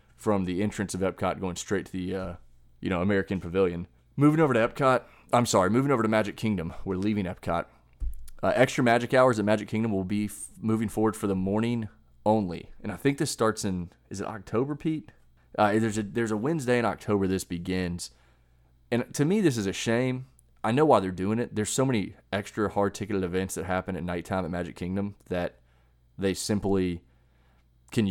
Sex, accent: male, American